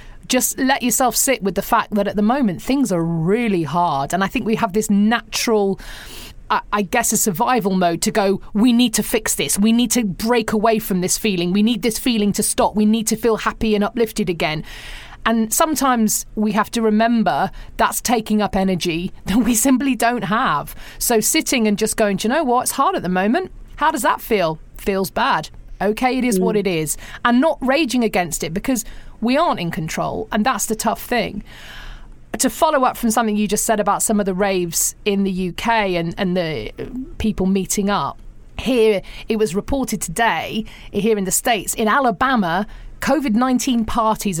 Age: 30-49